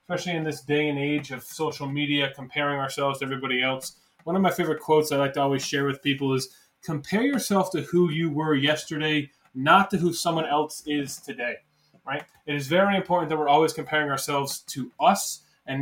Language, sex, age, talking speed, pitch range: English, male, 20-39, 205 wpm, 140-170 Hz